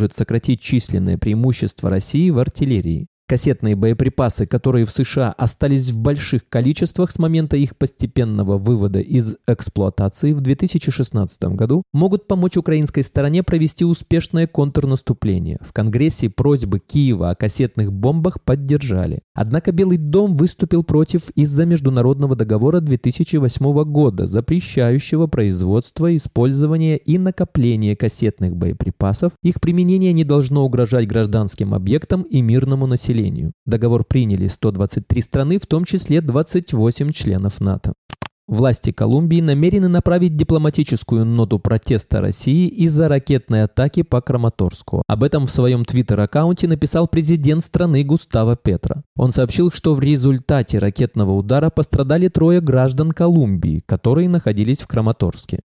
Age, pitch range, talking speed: 20-39, 110-160 Hz, 125 wpm